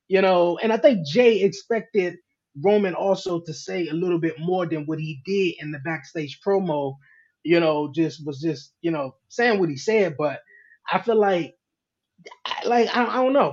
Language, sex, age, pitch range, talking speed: English, male, 20-39, 155-200 Hz, 185 wpm